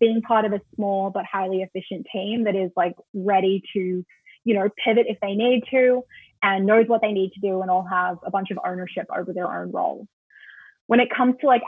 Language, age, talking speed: English, 20-39, 225 wpm